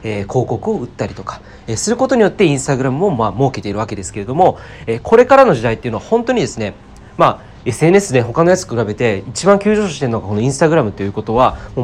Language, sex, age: Japanese, male, 30-49